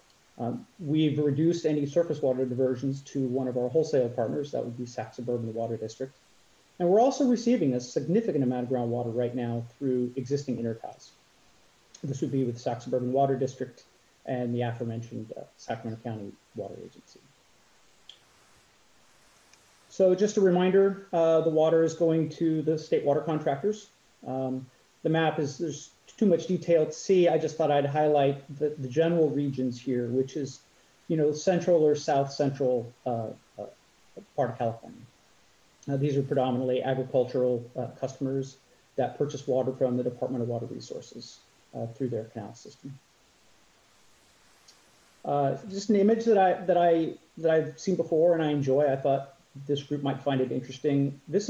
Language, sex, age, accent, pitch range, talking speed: English, male, 30-49, American, 125-160 Hz, 165 wpm